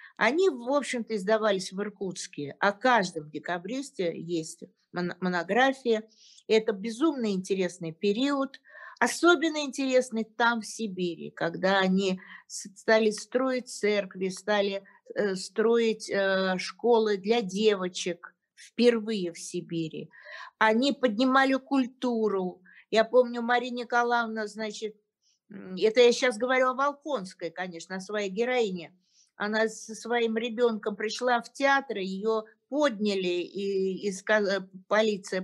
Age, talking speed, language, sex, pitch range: 50-69, 105 wpm, Russian, female, 190-245 Hz